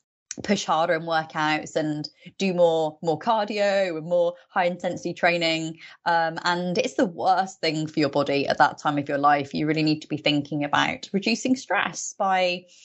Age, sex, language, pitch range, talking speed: 20-39, female, English, 160-210 Hz, 180 wpm